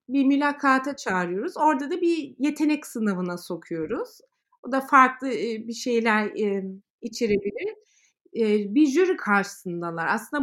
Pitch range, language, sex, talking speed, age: 225-305 Hz, Turkish, female, 110 wpm, 30-49